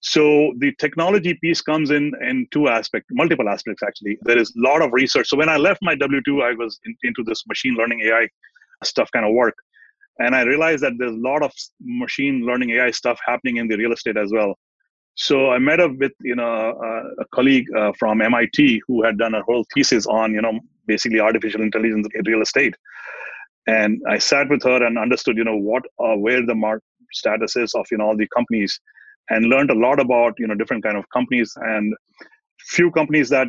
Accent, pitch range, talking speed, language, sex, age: Indian, 110-155 Hz, 215 wpm, English, male, 30-49